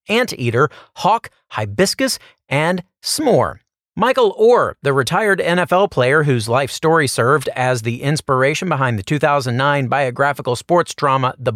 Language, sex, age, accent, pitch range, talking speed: English, male, 40-59, American, 135-180 Hz, 130 wpm